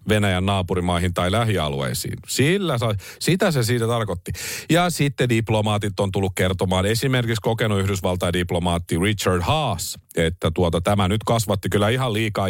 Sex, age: male, 40-59